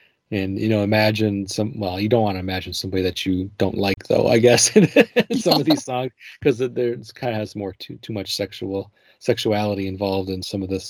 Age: 30-49